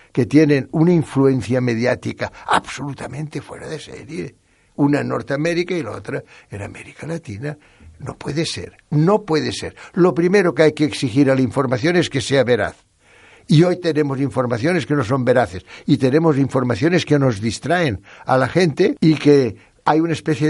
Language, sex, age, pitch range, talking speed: Spanish, male, 60-79, 120-160 Hz, 175 wpm